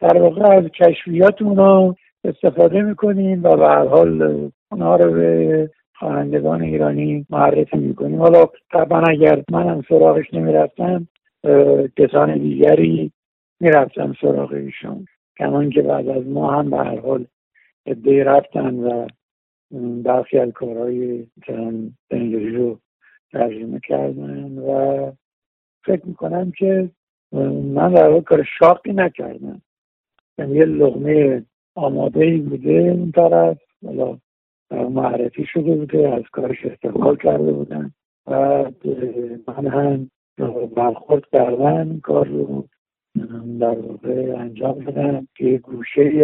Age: 60-79